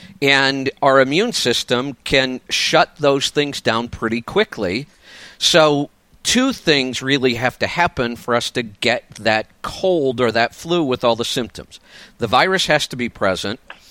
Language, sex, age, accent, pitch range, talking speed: English, male, 50-69, American, 125-180 Hz, 160 wpm